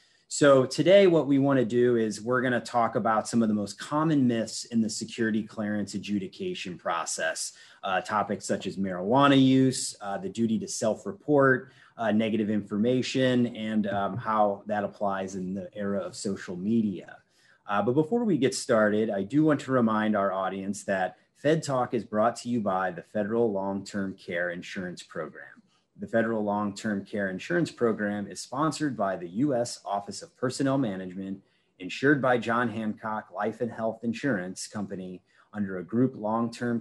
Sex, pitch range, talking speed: male, 100-125 Hz, 170 wpm